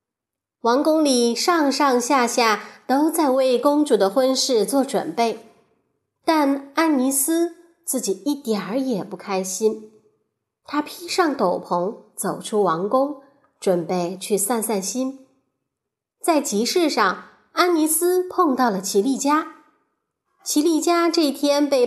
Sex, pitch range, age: female, 220-315 Hz, 20-39